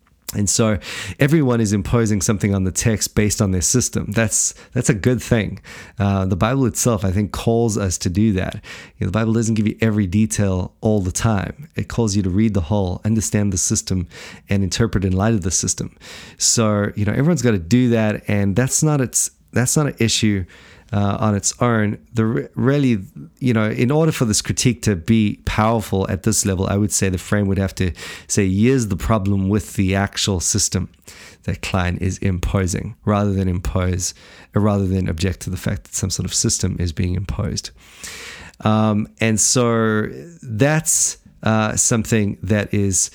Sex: male